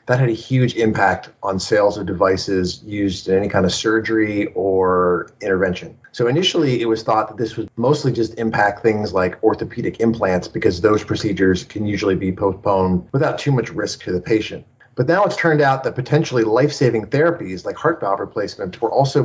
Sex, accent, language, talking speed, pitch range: male, American, English, 190 wpm, 105-135 Hz